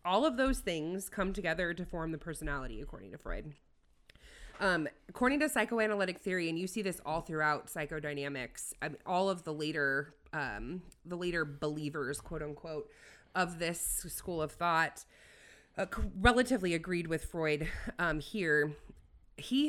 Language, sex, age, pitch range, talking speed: English, female, 20-39, 150-185 Hz, 150 wpm